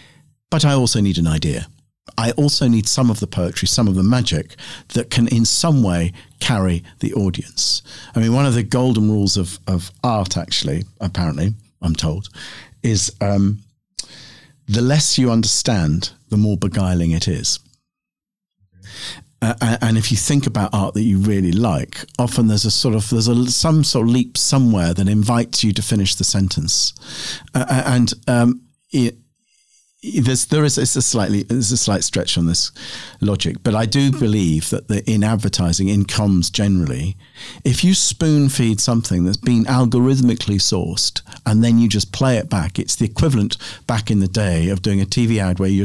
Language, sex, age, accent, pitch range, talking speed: English, male, 50-69, British, 95-125 Hz, 175 wpm